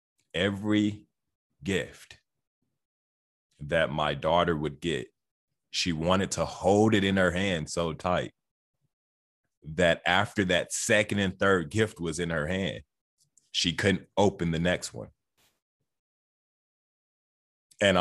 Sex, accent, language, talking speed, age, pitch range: male, American, English, 115 wpm, 30-49, 75-100 Hz